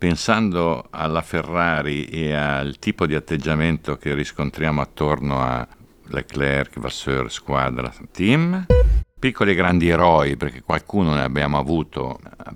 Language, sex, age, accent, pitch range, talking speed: Italian, male, 60-79, native, 70-90 Hz, 125 wpm